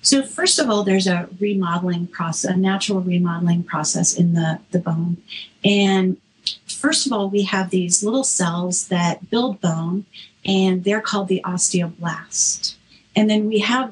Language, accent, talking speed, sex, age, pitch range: English, American, 160 wpm, female, 40-59, 175-210 Hz